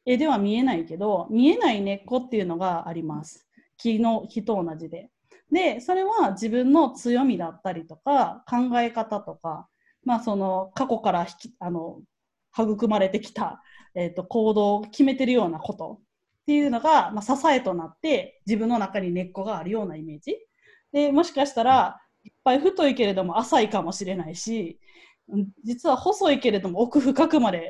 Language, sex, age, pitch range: Japanese, female, 20-39, 190-290 Hz